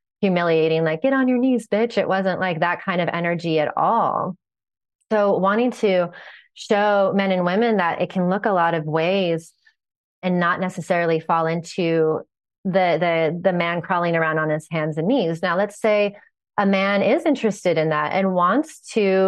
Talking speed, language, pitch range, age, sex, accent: 185 wpm, English, 175-220 Hz, 30-49, female, American